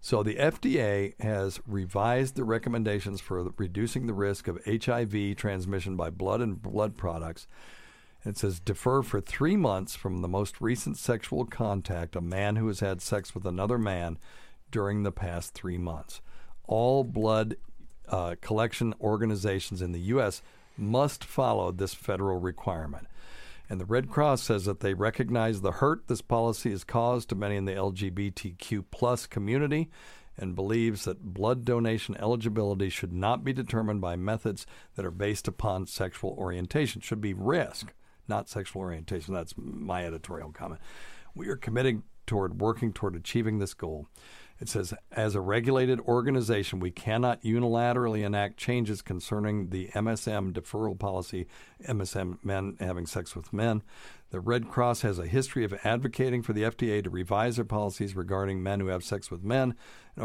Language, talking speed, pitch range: English, 160 wpm, 95-115 Hz